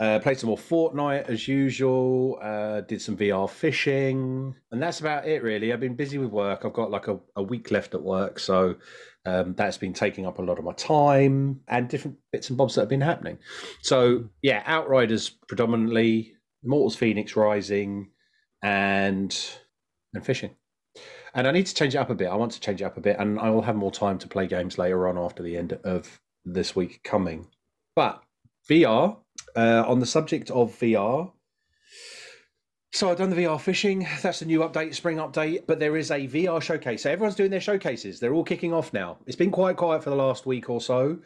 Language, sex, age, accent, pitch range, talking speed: English, male, 30-49, British, 105-145 Hz, 205 wpm